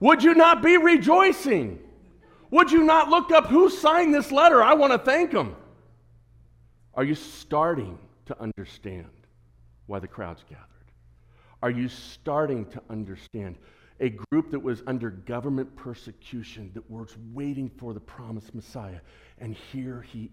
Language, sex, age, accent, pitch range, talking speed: English, male, 50-69, American, 115-180 Hz, 150 wpm